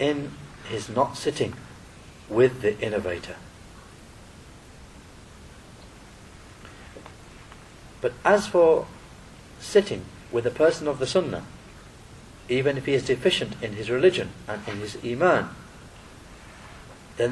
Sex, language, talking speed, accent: male, English, 105 wpm, British